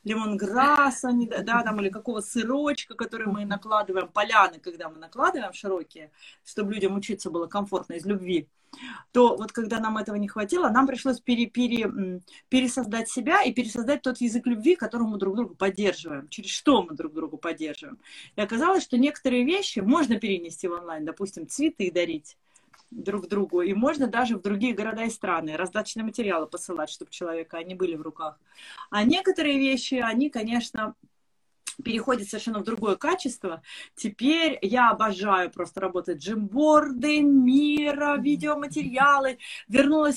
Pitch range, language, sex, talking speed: 195-260 Hz, Russian, female, 150 wpm